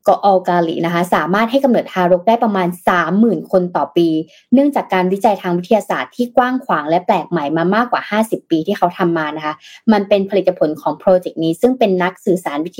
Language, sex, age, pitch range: Thai, female, 20-39, 175-230 Hz